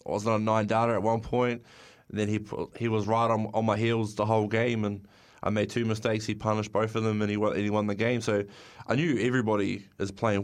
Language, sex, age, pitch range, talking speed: English, male, 20-39, 105-120 Hz, 260 wpm